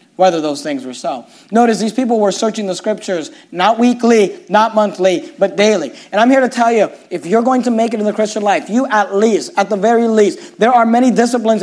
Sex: male